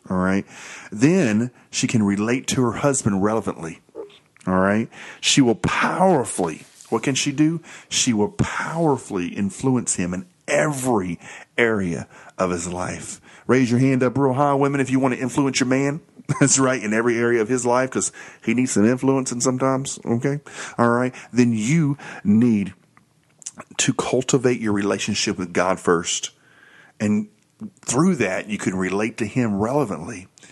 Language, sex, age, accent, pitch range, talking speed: English, male, 40-59, American, 100-135 Hz, 160 wpm